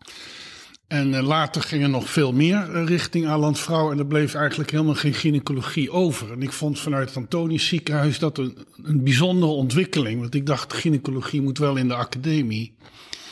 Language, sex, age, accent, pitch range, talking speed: Dutch, male, 50-69, Dutch, 130-155 Hz, 170 wpm